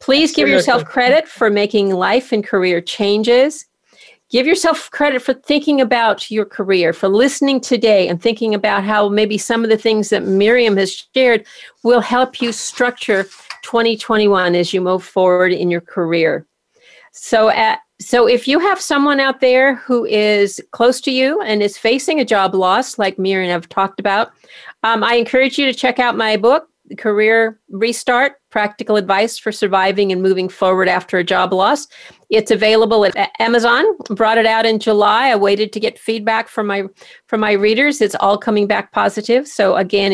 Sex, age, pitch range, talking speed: female, 50-69, 200-245 Hz, 180 wpm